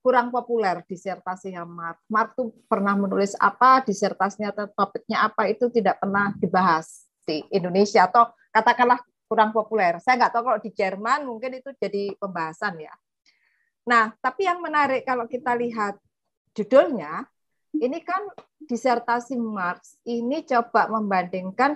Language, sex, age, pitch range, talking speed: Indonesian, female, 30-49, 195-245 Hz, 130 wpm